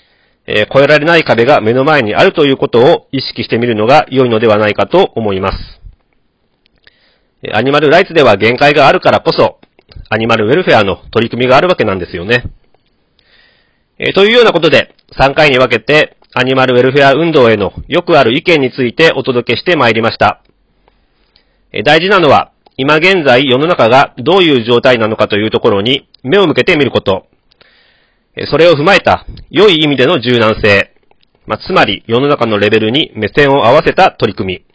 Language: Japanese